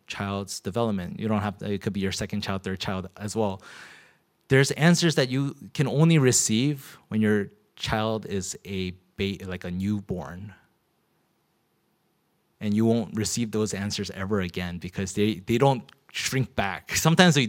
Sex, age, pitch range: male, 20-39, 100-130 Hz